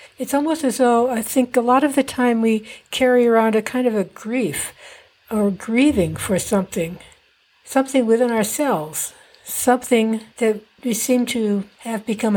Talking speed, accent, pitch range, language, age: 160 wpm, American, 190-235 Hz, English, 60-79